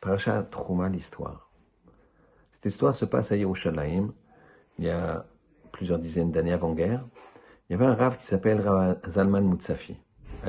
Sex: male